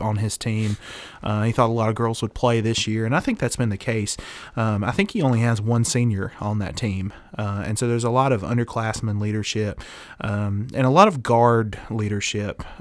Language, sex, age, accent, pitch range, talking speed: English, male, 30-49, American, 105-125 Hz, 225 wpm